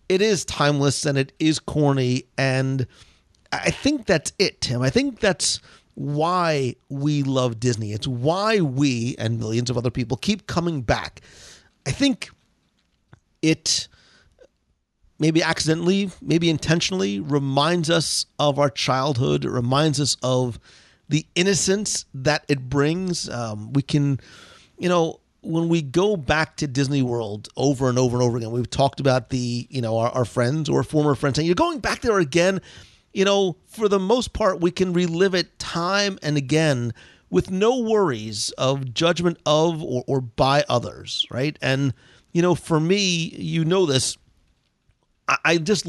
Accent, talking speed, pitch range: American, 160 wpm, 130-175 Hz